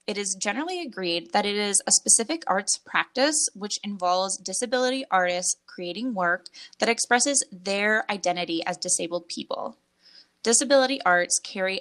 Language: English